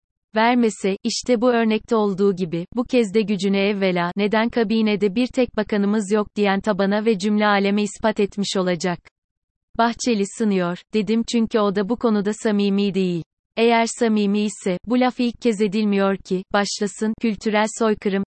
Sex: female